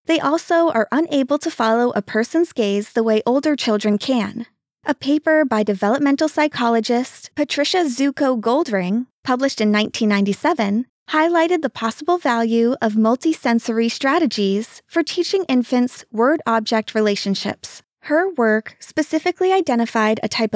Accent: American